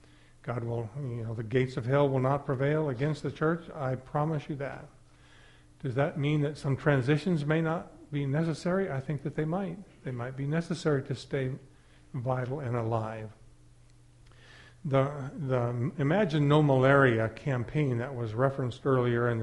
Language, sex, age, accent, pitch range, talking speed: English, male, 50-69, American, 115-145 Hz, 165 wpm